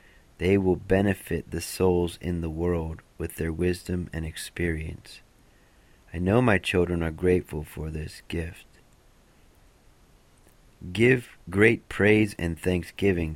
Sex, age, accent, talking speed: male, 30-49, American, 120 wpm